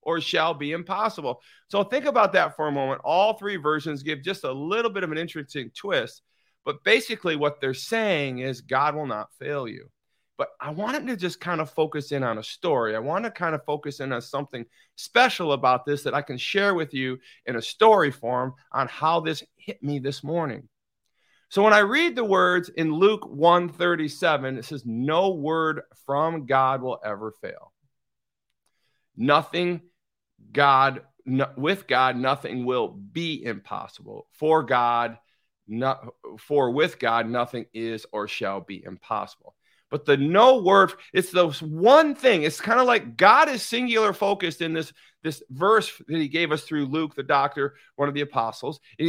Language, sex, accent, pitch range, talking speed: English, male, American, 135-180 Hz, 180 wpm